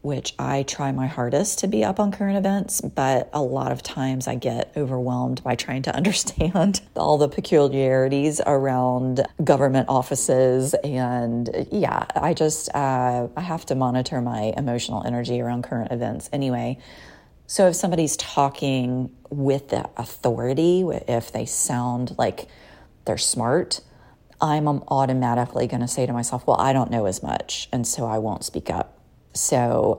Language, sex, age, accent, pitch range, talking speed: English, female, 40-59, American, 120-145 Hz, 155 wpm